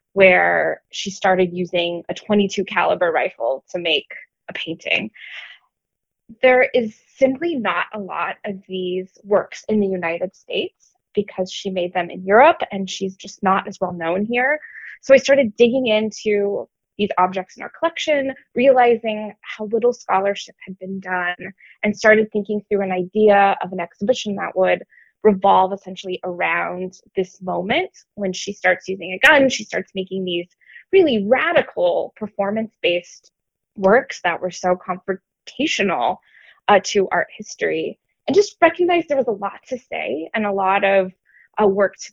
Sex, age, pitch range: female, 20-39, 190-225 Hz